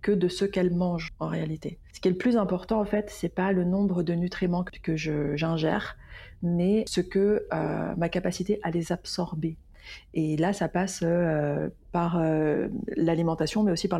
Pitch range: 165-195 Hz